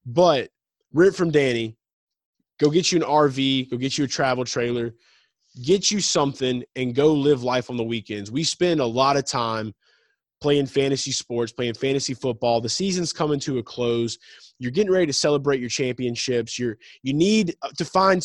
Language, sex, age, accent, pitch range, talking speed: English, male, 20-39, American, 125-160 Hz, 180 wpm